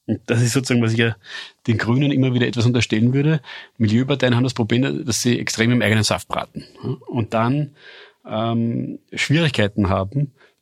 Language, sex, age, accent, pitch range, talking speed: German, male, 40-59, German, 110-135 Hz, 160 wpm